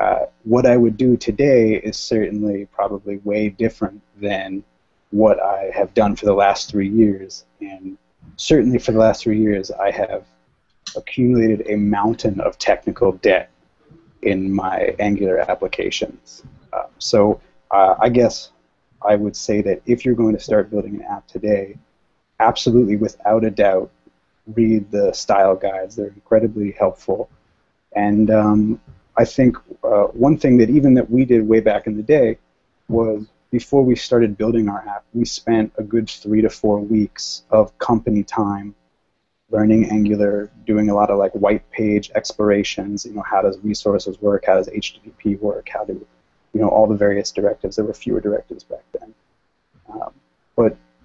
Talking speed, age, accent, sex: 165 wpm, 30-49, American, male